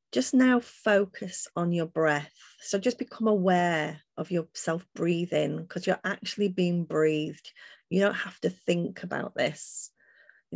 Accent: British